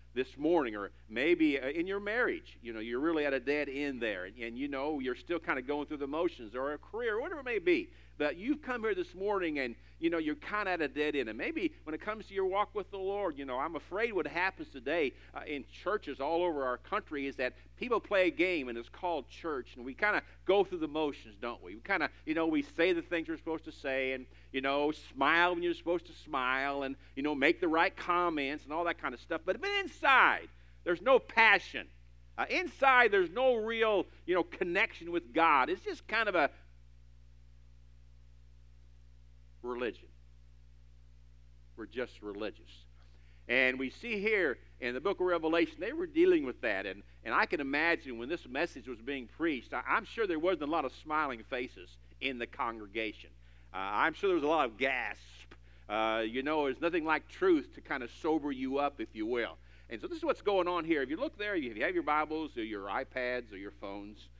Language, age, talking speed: English, 50-69, 225 wpm